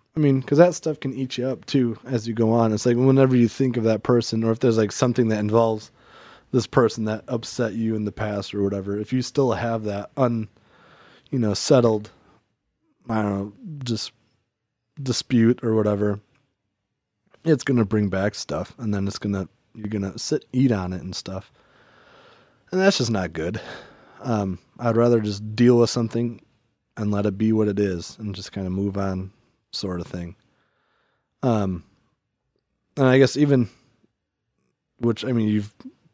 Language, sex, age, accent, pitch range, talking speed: English, male, 20-39, American, 105-125 Hz, 185 wpm